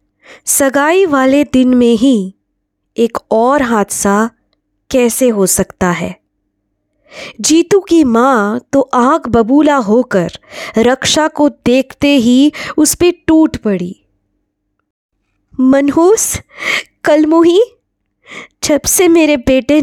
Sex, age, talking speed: female, 20-39, 100 wpm